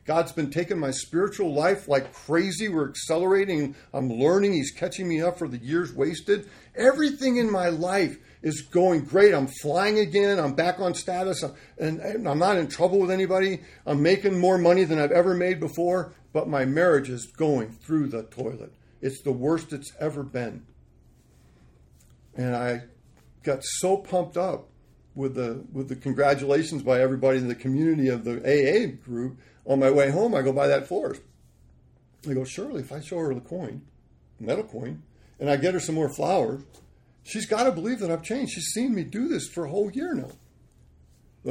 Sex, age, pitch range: male, 50-69, 110-170 Hz